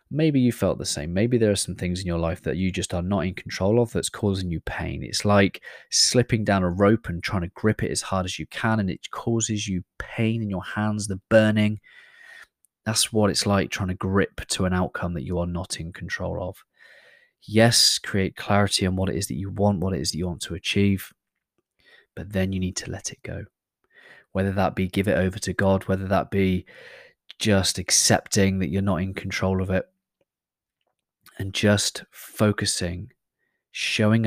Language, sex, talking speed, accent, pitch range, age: English, male, 205 wpm, British, 95-110 Hz, 20-39